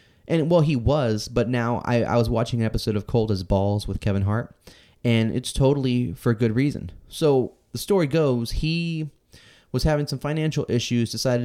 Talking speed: 190 wpm